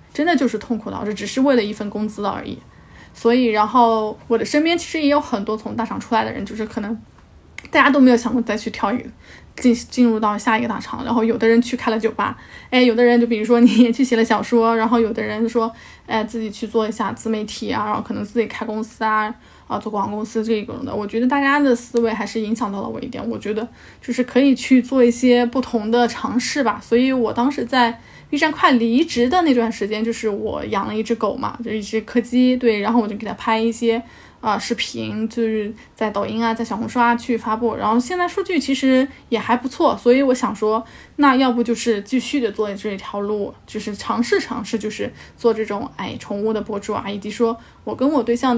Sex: female